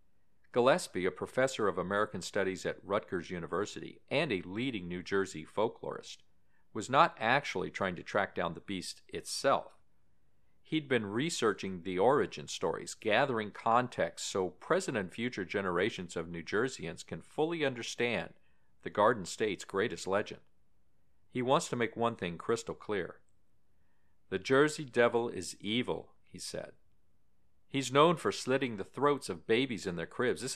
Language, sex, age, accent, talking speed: English, male, 50-69, American, 150 wpm